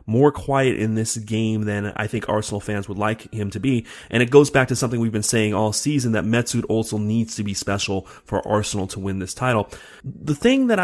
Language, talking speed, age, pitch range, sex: English, 235 wpm, 30-49, 110-145 Hz, male